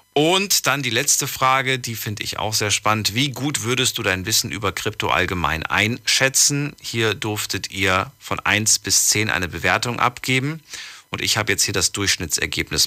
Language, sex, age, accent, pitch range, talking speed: German, male, 40-59, German, 90-120 Hz, 175 wpm